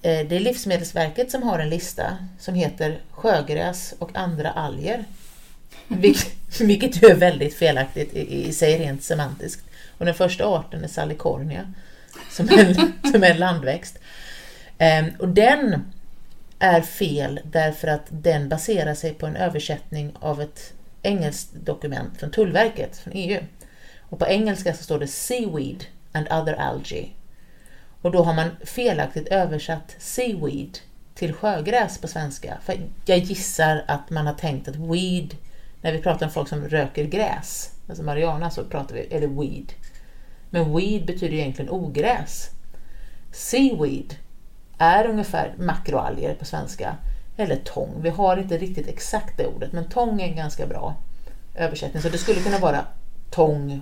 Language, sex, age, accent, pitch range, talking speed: Swedish, female, 30-49, native, 155-190 Hz, 145 wpm